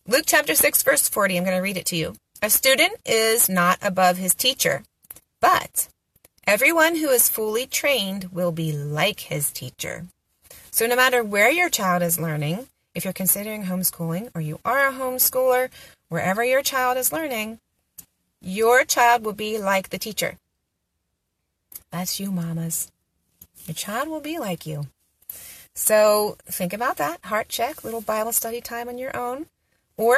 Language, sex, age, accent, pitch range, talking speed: English, female, 30-49, American, 175-235 Hz, 165 wpm